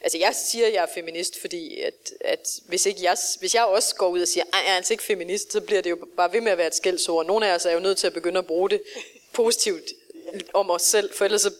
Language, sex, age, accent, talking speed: Danish, female, 30-49, native, 285 wpm